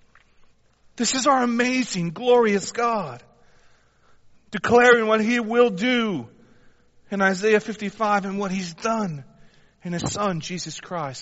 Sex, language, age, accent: male, English, 40-59, American